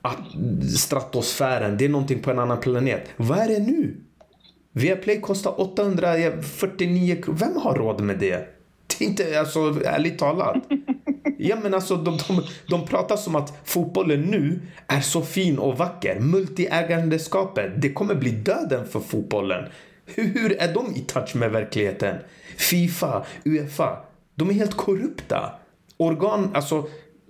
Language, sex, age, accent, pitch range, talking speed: Swedish, male, 30-49, native, 125-175 Hz, 150 wpm